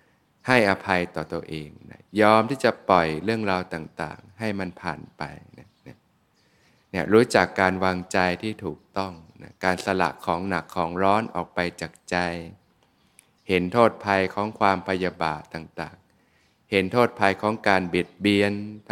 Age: 20-39